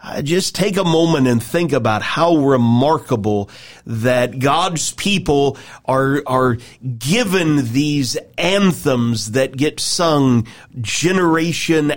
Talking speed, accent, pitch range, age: 105 wpm, American, 125-170 Hz, 40-59